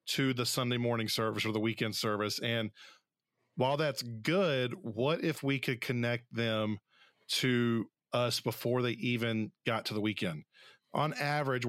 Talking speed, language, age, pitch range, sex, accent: 155 wpm, English, 40-59, 110-135 Hz, male, American